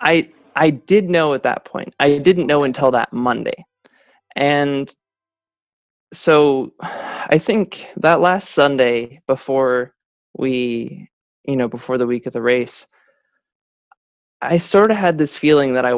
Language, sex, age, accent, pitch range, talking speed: English, male, 20-39, American, 125-155 Hz, 145 wpm